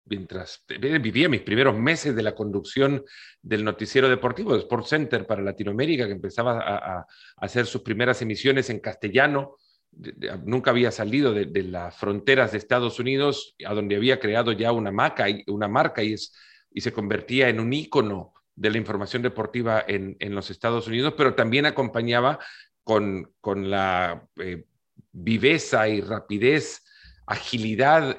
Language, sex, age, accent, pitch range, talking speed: Spanish, male, 40-59, Mexican, 105-135 Hz, 160 wpm